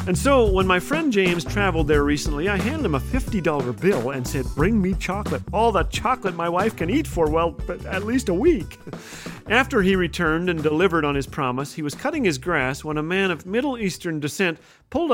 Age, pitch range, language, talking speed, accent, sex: 40-59, 150-210 Hz, English, 215 wpm, American, male